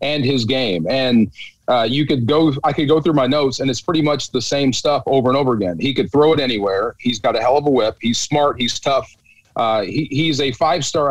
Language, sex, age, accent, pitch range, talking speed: English, male, 40-59, American, 130-160 Hz, 255 wpm